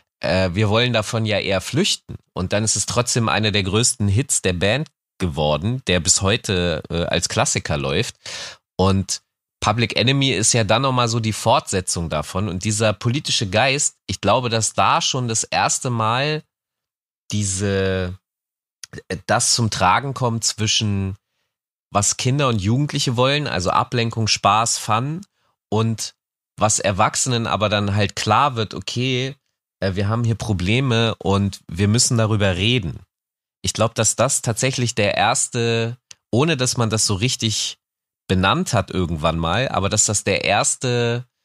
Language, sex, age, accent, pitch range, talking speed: German, male, 30-49, German, 100-120 Hz, 150 wpm